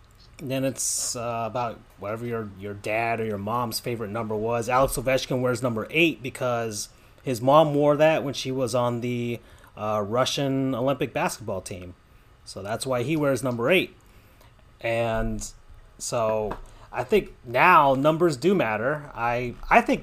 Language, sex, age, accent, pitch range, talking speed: English, male, 30-49, American, 110-145 Hz, 155 wpm